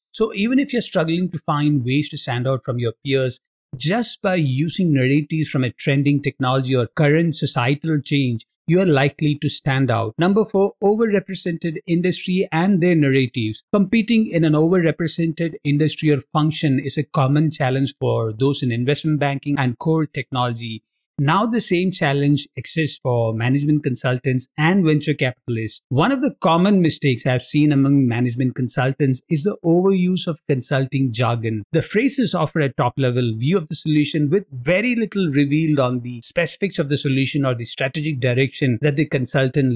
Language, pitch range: English, 130-165 Hz